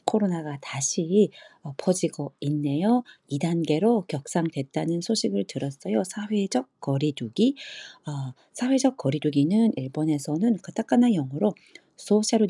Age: 40-59